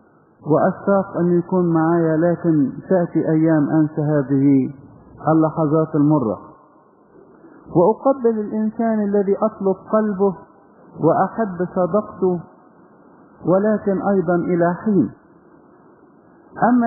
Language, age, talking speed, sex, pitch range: English, 50-69, 80 wpm, male, 170-215 Hz